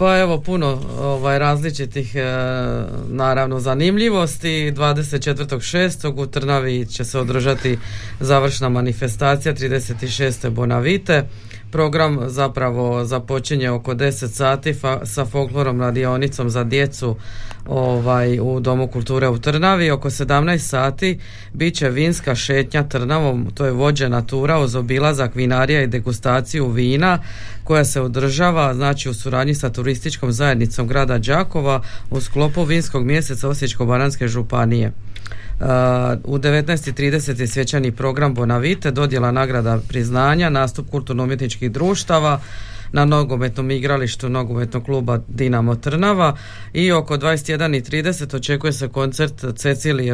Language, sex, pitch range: Croatian, female, 125-145 Hz